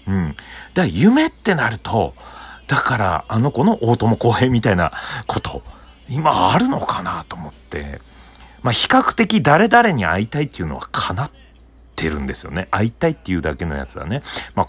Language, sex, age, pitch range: Japanese, male, 40-59, 70-115 Hz